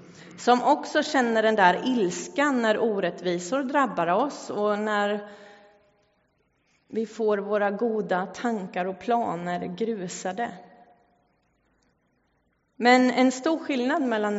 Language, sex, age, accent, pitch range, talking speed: English, female, 30-49, Swedish, 180-225 Hz, 105 wpm